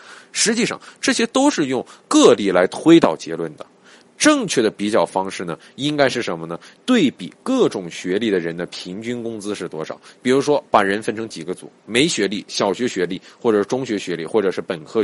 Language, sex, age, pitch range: Chinese, male, 20-39, 90-150 Hz